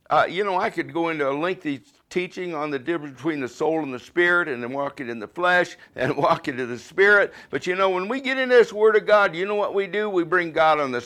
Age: 60-79